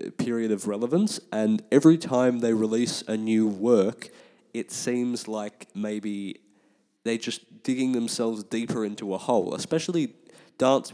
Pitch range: 100-115 Hz